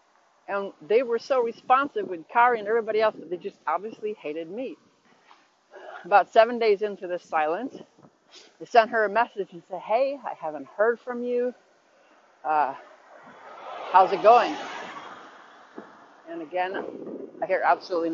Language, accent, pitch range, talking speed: English, American, 180-245 Hz, 145 wpm